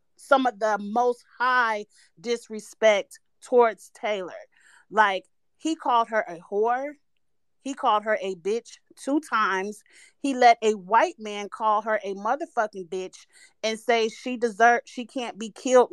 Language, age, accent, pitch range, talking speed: English, 30-49, American, 195-250 Hz, 145 wpm